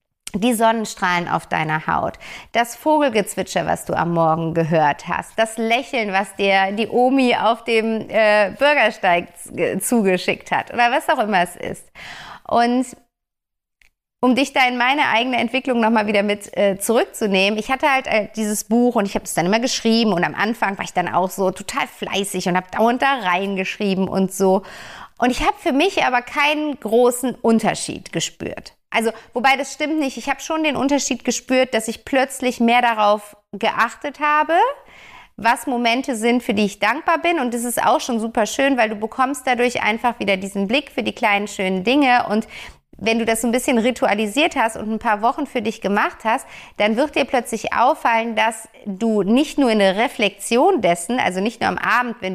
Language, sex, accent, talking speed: German, female, German, 195 wpm